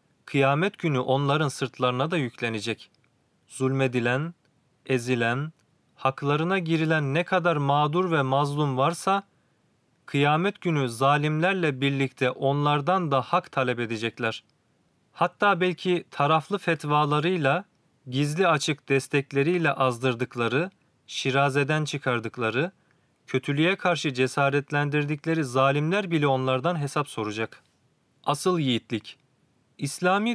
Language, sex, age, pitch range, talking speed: Turkish, male, 40-59, 130-170 Hz, 90 wpm